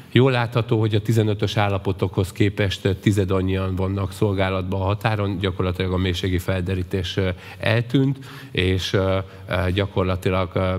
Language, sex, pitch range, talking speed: Hungarian, male, 95-105 Hz, 105 wpm